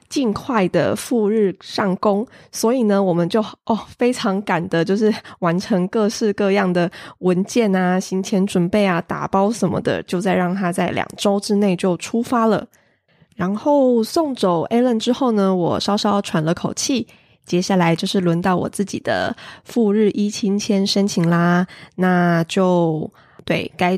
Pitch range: 185-220 Hz